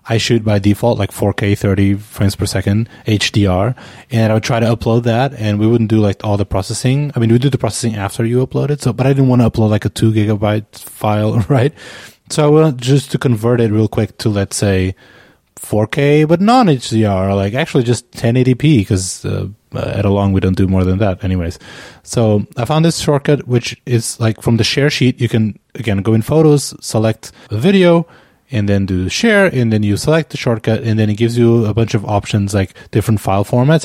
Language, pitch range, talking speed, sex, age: English, 105-130 Hz, 220 wpm, male, 20-39